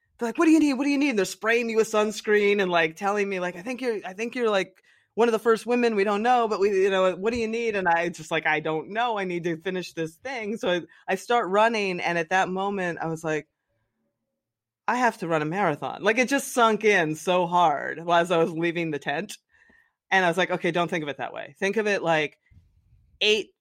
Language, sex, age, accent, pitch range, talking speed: English, female, 30-49, American, 155-215 Hz, 260 wpm